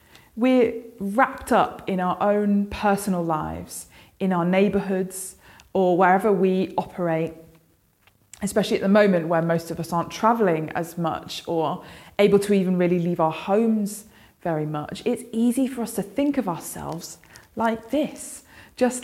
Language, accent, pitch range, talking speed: English, British, 170-225 Hz, 150 wpm